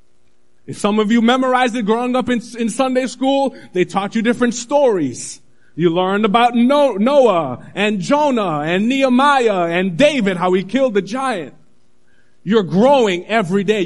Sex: male